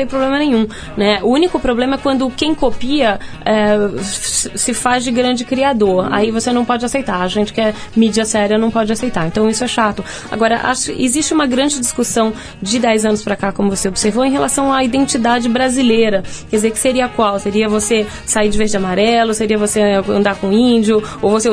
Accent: Brazilian